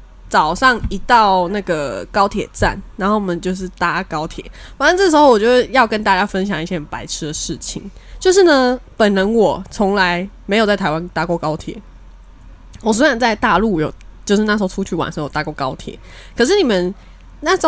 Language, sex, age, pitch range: Chinese, female, 20-39, 175-240 Hz